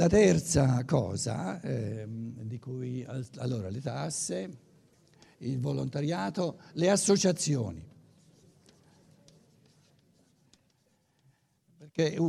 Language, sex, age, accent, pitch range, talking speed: Italian, male, 60-79, native, 135-185 Hz, 70 wpm